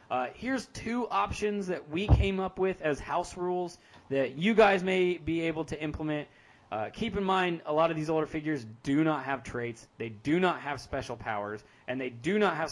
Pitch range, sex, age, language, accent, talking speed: 130-170 Hz, male, 20-39, English, American, 210 wpm